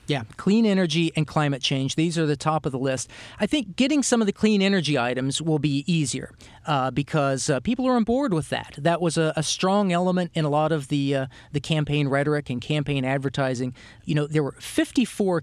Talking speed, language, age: 220 wpm, English, 40-59